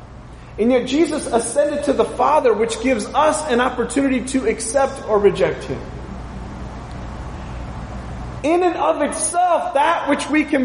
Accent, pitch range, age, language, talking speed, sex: American, 205-290 Hz, 30-49, English, 140 wpm, male